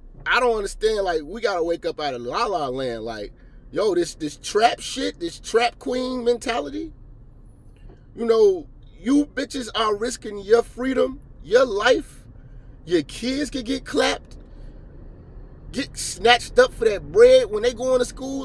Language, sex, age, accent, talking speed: English, male, 30-49, American, 155 wpm